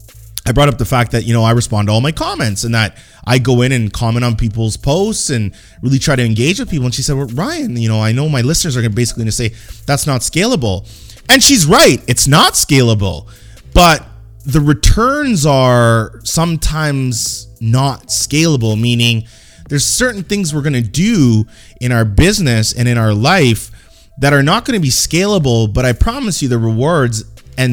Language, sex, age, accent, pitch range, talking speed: English, male, 20-39, American, 110-155 Hz, 195 wpm